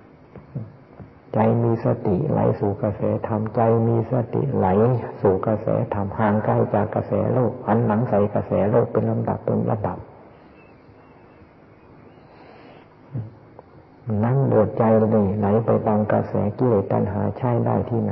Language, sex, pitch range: Thai, male, 105-115 Hz